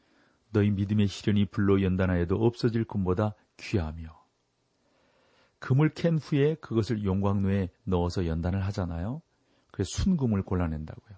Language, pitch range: Korean, 95-120 Hz